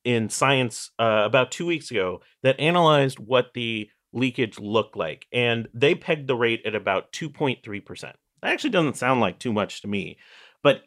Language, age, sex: English, 30-49, male